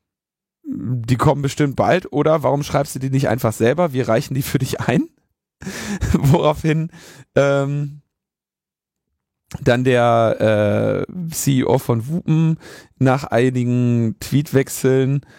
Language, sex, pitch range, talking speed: German, male, 120-150 Hz, 115 wpm